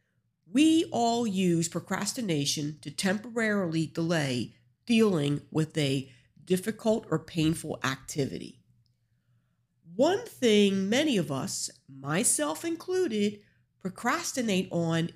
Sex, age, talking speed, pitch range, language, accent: female, 50-69, 90 wpm, 155-235 Hz, English, American